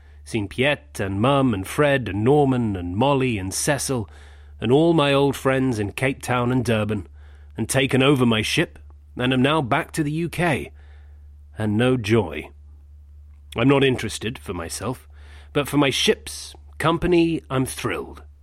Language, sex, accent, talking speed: English, male, British, 160 wpm